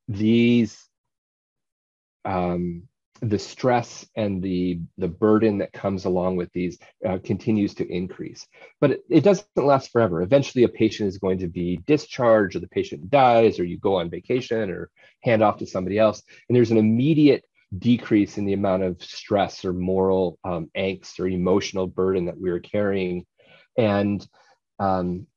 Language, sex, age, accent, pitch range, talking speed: English, male, 30-49, American, 95-115 Hz, 160 wpm